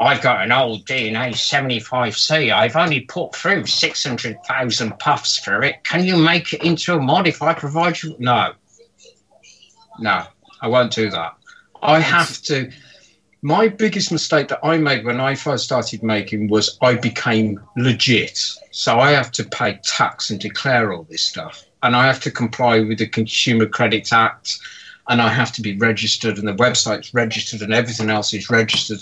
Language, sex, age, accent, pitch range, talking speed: English, male, 50-69, British, 110-145 Hz, 185 wpm